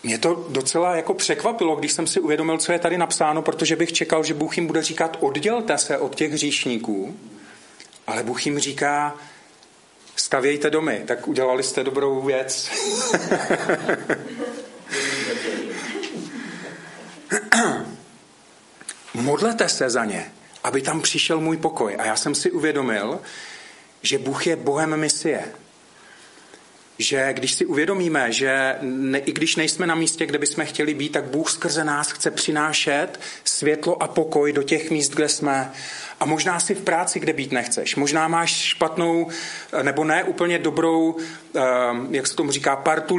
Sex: male